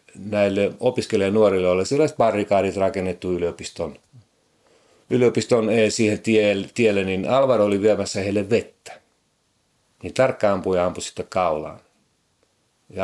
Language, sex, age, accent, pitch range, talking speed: Finnish, male, 40-59, native, 90-105 Hz, 115 wpm